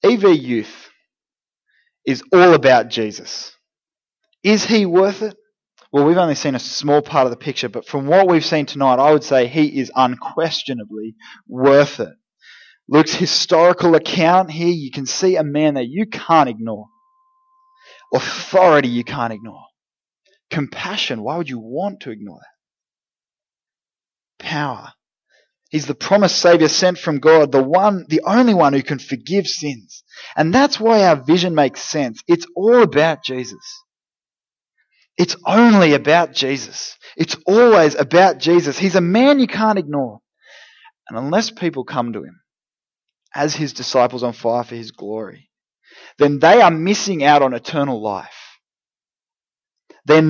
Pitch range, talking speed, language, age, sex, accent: 135-190 Hz, 150 wpm, English, 20-39, male, Australian